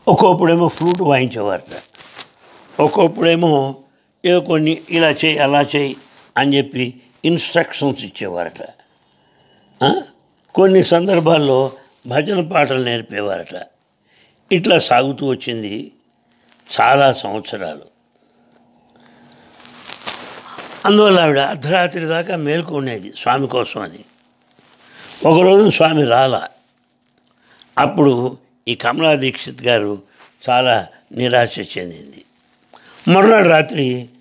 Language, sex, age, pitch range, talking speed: English, male, 60-79, 125-170 Hz, 55 wpm